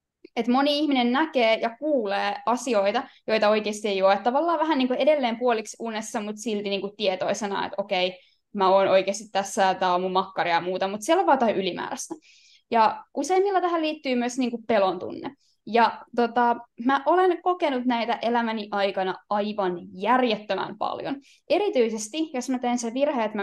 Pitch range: 205-285 Hz